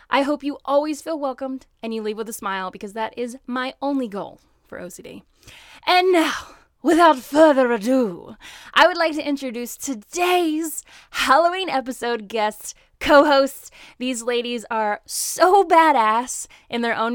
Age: 10-29